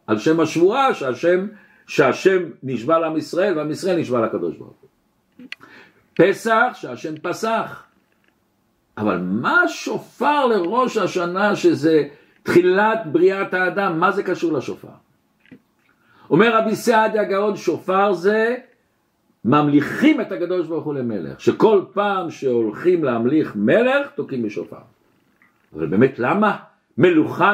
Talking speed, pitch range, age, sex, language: 115 wpm, 160-240 Hz, 60-79, male, Hebrew